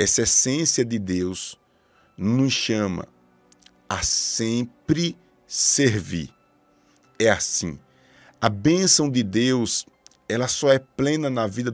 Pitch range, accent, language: 100-125 Hz, Brazilian, Portuguese